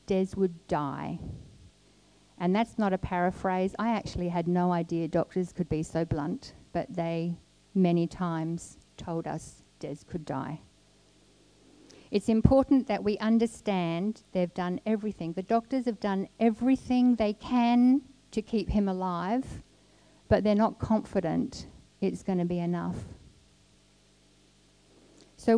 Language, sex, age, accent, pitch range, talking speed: English, female, 50-69, Australian, 165-225 Hz, 130 wpm